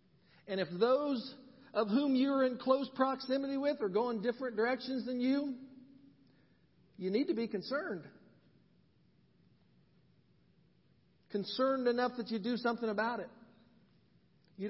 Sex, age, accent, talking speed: male, 50-69, American, 125 wpm